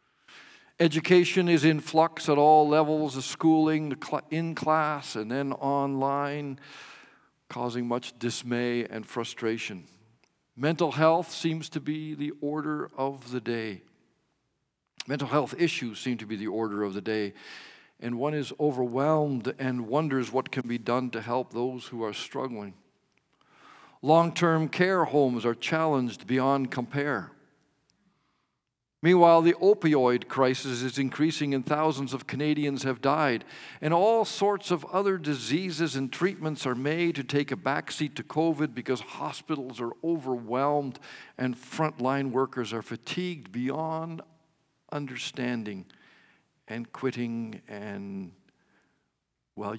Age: 50-69